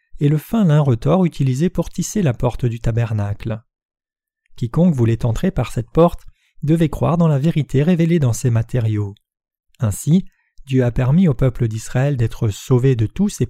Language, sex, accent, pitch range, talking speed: French, male, French, 120-170 Hz, 170 wpm